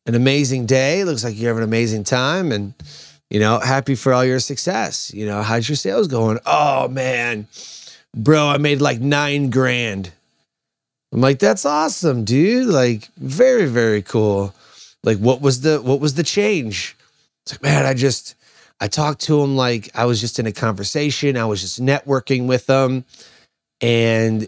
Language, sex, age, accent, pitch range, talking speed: English, male, 30-49, American, 105-135 Hz, 175 wpm